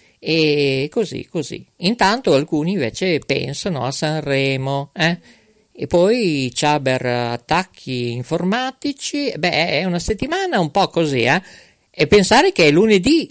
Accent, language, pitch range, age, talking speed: native, Italian, 150-215 Hz, 50-69, 125 wpm